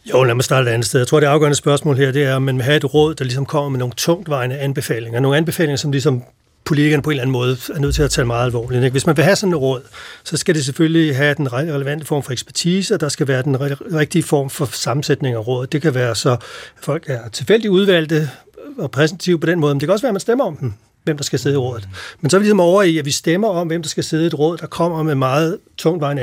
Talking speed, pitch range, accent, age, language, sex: 285 wpm, 135-165 Hz, native, 40-59, Danish, male